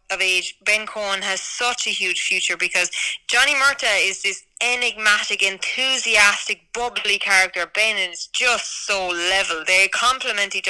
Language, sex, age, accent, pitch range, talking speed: English, female, 10-29, Irish, 180-210 Hz, 145 wpm